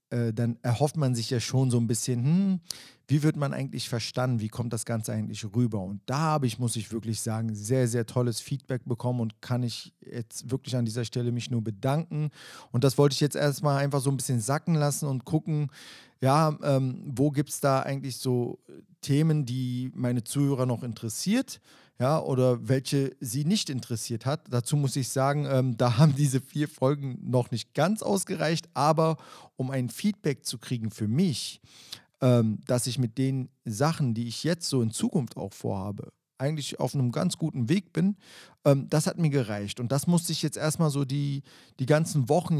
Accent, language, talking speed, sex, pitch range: German, German, 195 wpm, male, 120-140 Hz